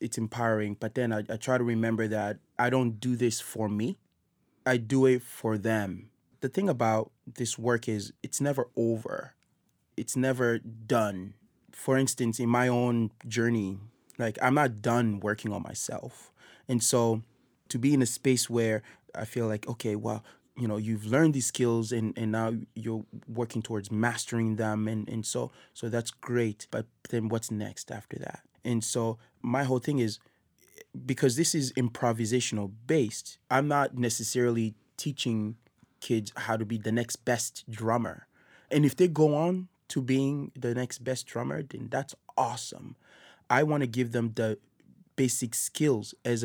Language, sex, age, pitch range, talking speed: English, male, 20-39, 110-130 Hz, 170 wpm